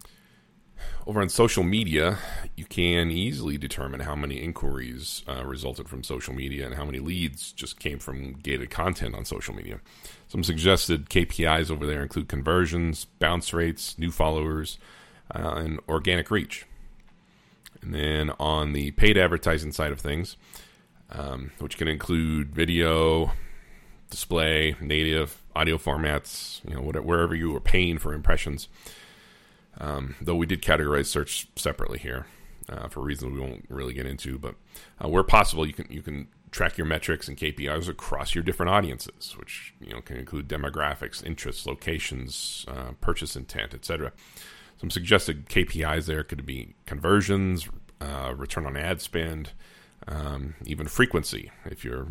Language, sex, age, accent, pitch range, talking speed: English, male, 40-59, American, 70-85 Hz, 150 wpm